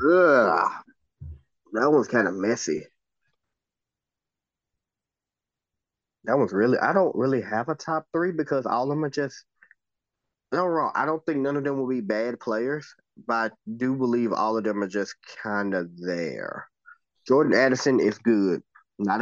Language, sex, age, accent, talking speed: English, male, 20-39, American, 160 wpm